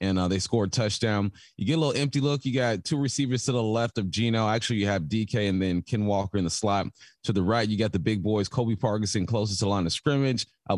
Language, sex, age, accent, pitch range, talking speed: English, male, 30-49, American, 95-115 Hz, 275 wpm